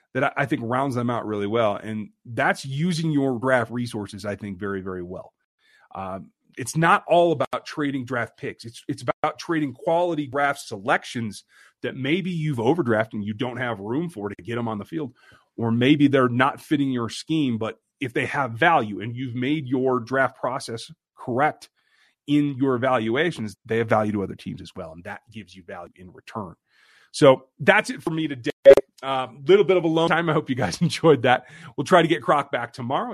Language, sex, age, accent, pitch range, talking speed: English, male, 30-49, American, 115-155 Hz, 205 wpm